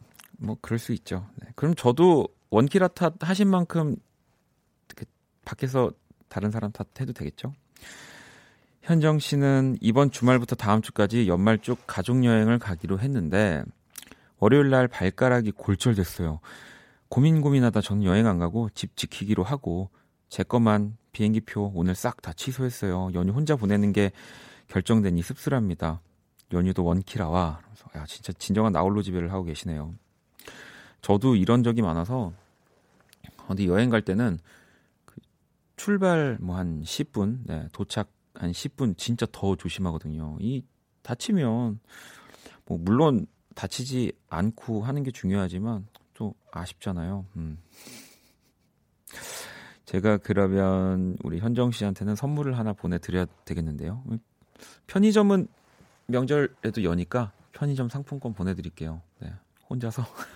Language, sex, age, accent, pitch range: Korean, male, 40-59, native, 95-125 Hz